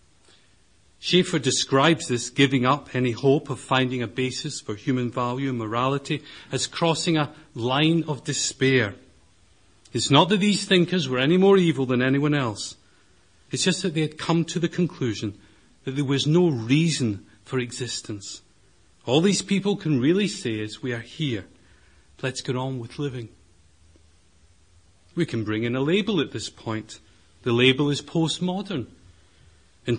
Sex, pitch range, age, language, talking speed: male, 100-150 Hz, 40-59, English, 160 wpm